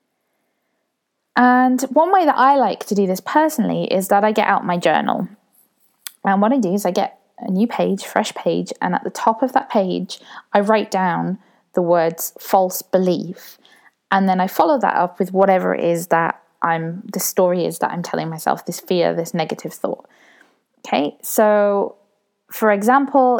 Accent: British